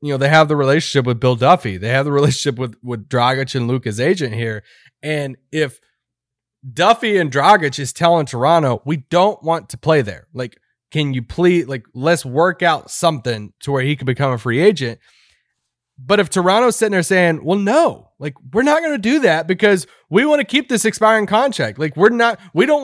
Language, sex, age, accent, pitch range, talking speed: English, male, 20-39, American, 140-200 Hz, 210 wpm